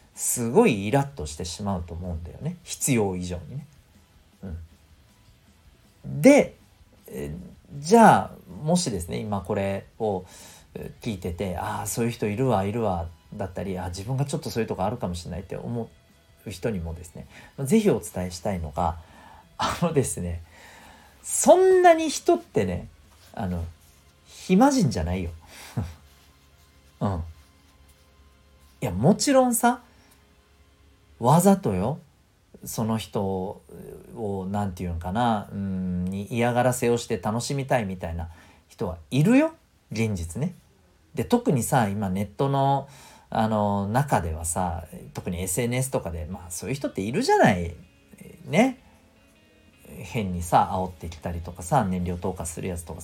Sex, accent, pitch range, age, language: male, native, 85-130 Hz, 40-59, Japanese